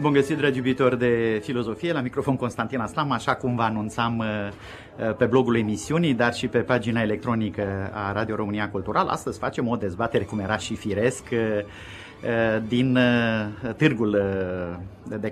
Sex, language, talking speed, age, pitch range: male, Romanian, 145 wpm, 30-49, 105-130 Hz